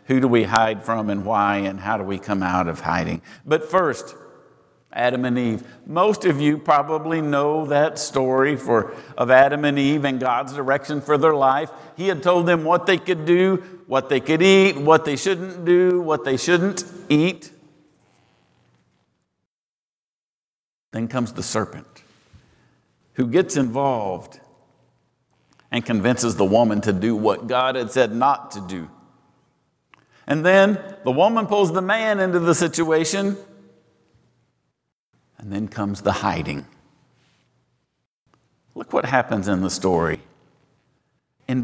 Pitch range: 110-170 Hz